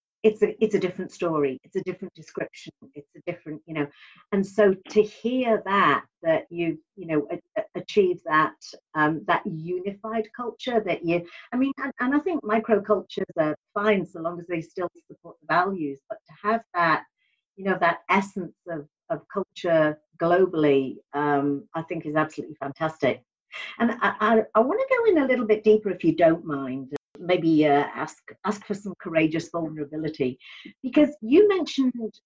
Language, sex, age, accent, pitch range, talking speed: English, female, 50-69, British, 155-220 Hz, 180 wpm